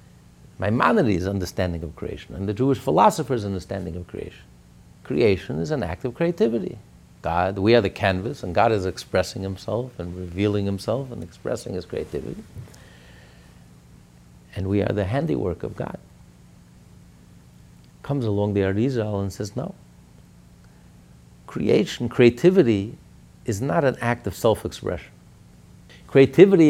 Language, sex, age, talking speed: English, male, 60-79, 130 wpm